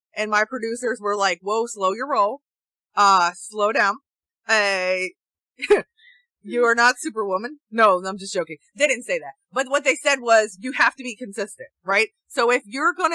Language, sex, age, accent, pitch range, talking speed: English, female, 20-39, American, 200-265 Hz, 185 wpm